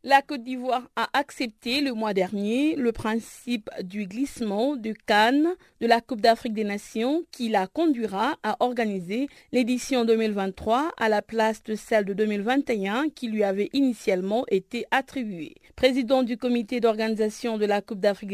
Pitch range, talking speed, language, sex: 205-250 Hz, 155 wpm, French, female